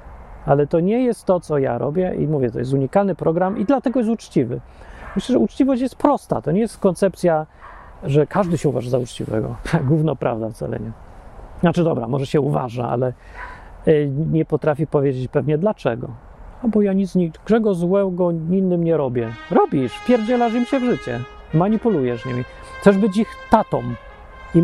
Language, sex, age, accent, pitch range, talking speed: Polish, male, 40-59, native, 140-200 Hz, 170 wpm